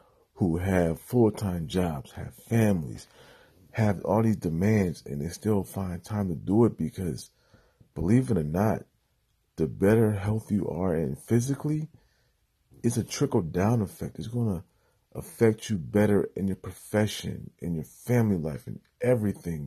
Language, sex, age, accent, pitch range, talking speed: English, male, 40-59, American, 90-115 Hz, 150 wpm